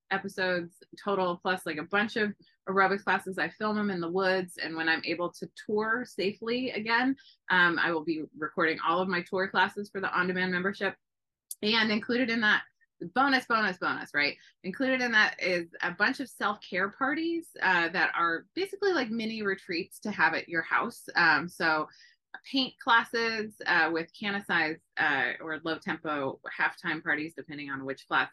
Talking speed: 180 wpm